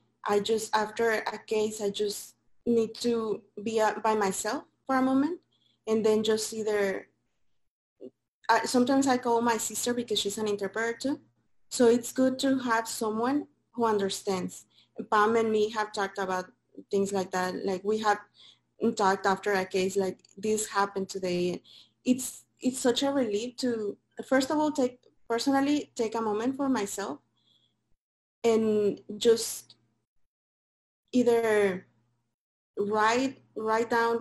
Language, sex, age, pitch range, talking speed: English, female, 20-39, 200-235 Hz, 150 wpm